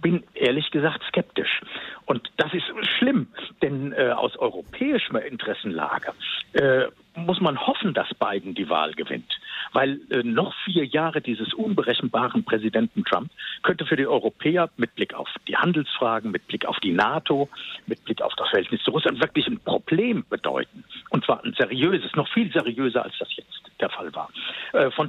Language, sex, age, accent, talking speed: German, male, 60-79, German, 170 wpm